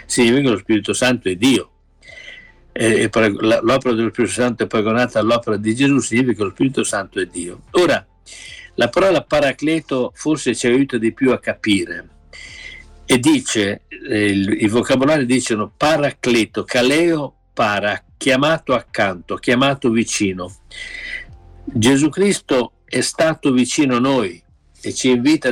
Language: Italian